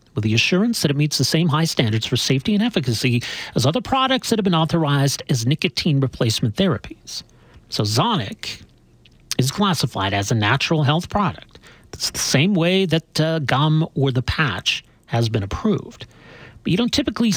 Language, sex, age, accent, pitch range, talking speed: English, male, 40-59, American, 125-180 Hz, 175 wpm